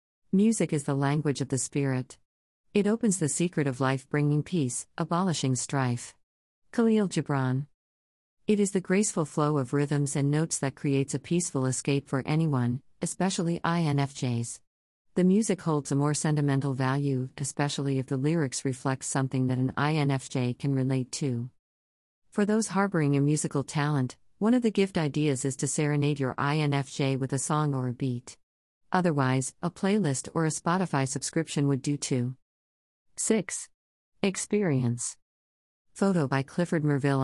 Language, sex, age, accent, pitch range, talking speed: English, female, 40-59, American, 130-165 Hz, 150 wpm